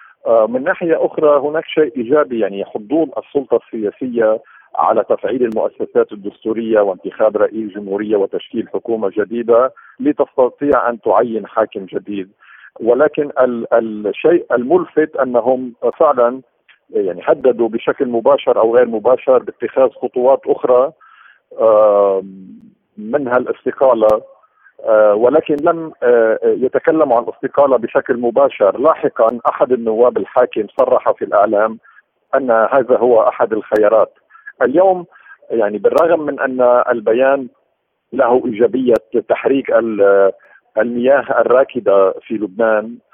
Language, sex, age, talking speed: Arabic, male, 50-69, 105 wpm